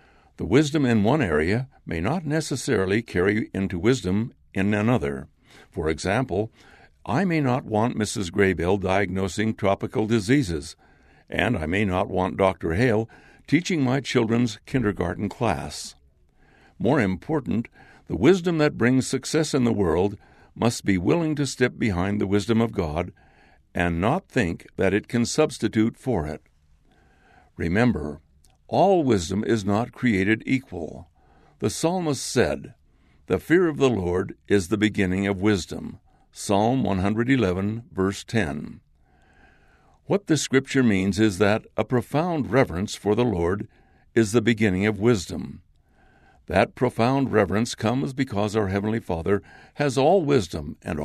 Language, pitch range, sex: English, 90-125 Hz, male